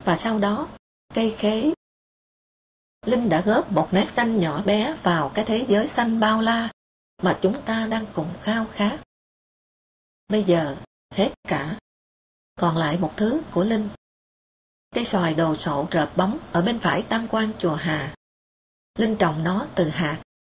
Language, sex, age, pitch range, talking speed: English, female, 20-39, 165-225 Hz, 160 wpm